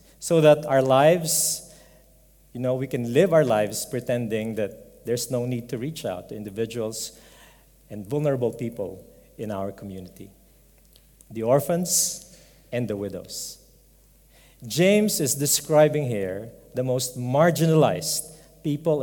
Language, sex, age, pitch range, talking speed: English, male, 50-69, 125-170 Hz, 125 wpm